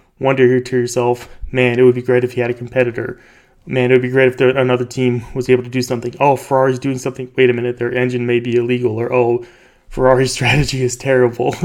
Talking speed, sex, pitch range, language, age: 230 wpm, male, 120-130 Hz, English, 30-49